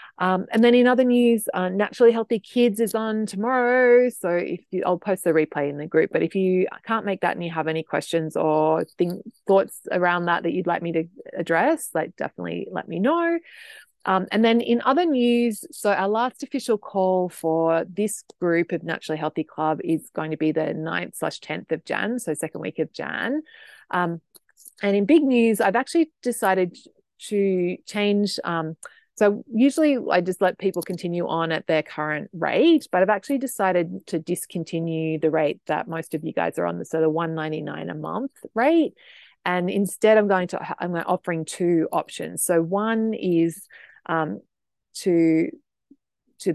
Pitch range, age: 165-230 Hz, 30-49